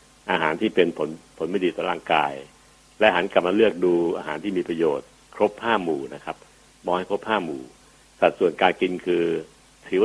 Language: Thai